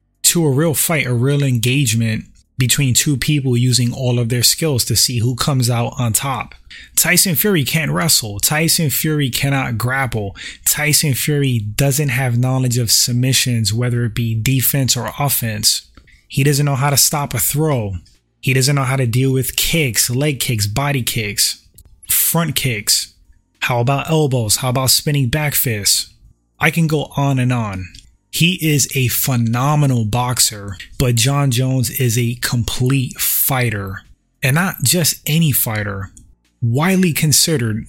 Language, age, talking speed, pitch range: English, 20-39, 155 wpm, 120-150 Hz